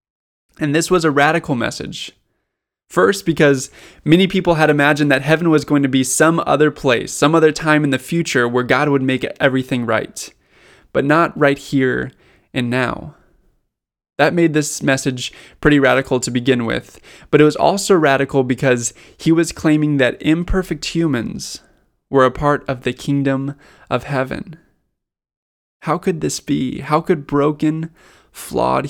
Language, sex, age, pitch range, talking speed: English, male, 20-39, 130-155 Hz, 160 wpm